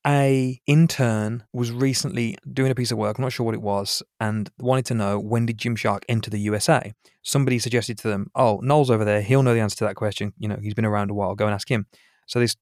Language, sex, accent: English, male, British